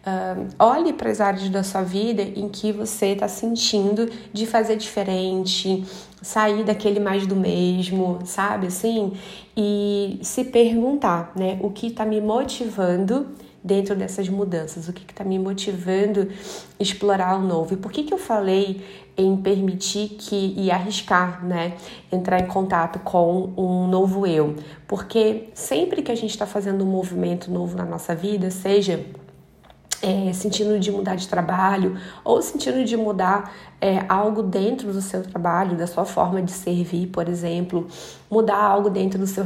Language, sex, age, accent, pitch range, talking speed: Portuguese, female, 20-39, Brazilian, 185-210 Hz, 160 wpm